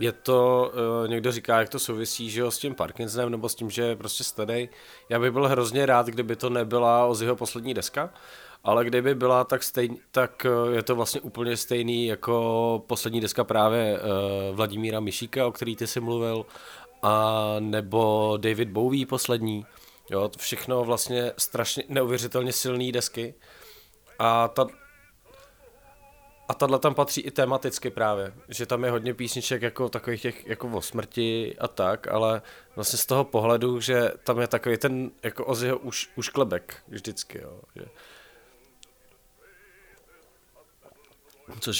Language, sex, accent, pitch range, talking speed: Czech, male, native, 115-125 Hz, 150 wpm